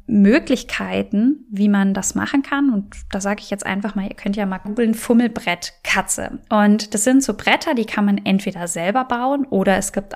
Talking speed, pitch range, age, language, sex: 195 wpm, 195-235 Hz, 10-29, German, female